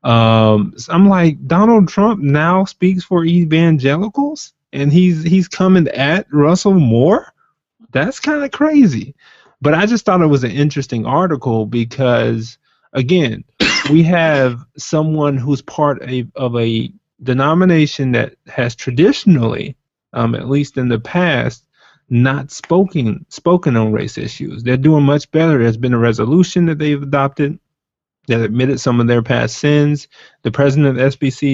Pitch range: 120-160 Hz